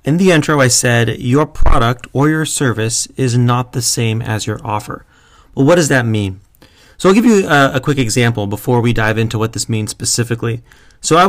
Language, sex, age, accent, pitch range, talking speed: English, male, 30-49, American, 110-130 Hz, 215 wpm